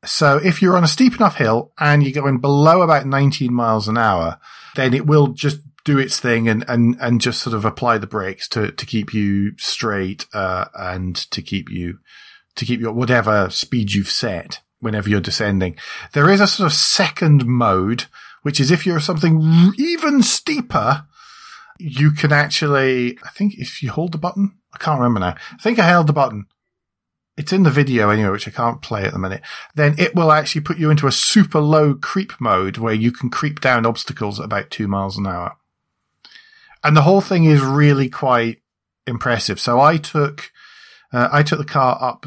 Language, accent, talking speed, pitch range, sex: English, British, 200 wpm, 105-150 Hz, male